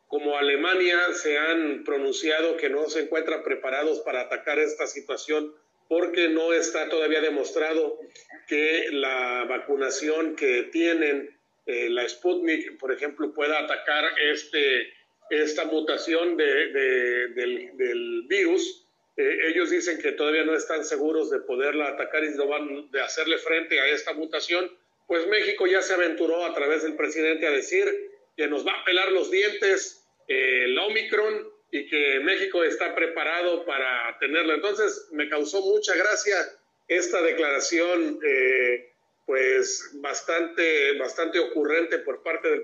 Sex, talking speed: male, 140 wpm